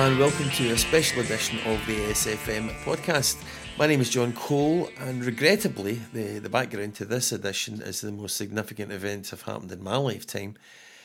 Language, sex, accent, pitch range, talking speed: English, male, British, 100-125 Hz, 180 wpm